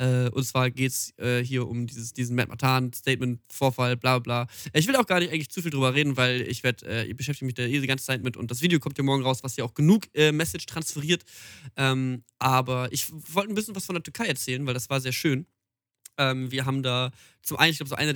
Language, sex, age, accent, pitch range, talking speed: German, male, 20-39, German, 125-155 Hz, 230 wpm